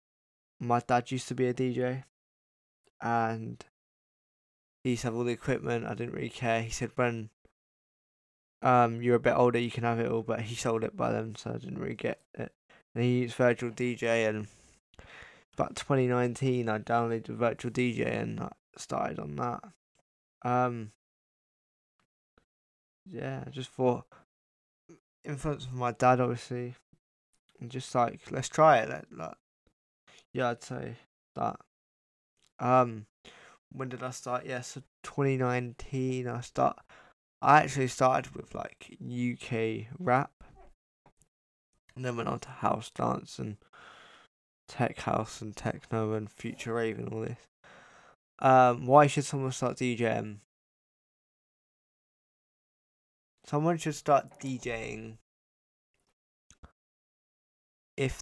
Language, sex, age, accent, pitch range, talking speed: English, male, 10-29, British, 110-130 Hz, 135 wpm